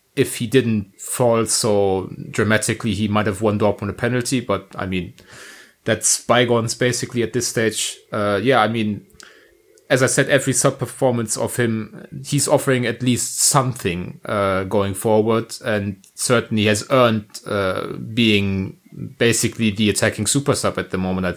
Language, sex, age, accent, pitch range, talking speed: English, male, 30-49, German, 105-130 Hz, 165 wpm